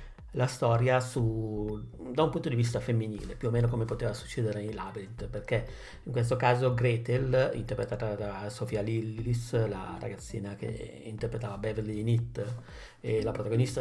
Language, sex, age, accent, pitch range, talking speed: Italian, male, 50-69, native, 110-120 Hz, 150 wpm